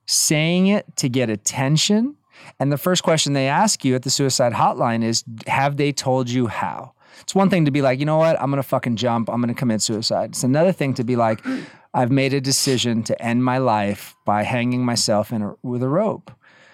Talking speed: 220 wpm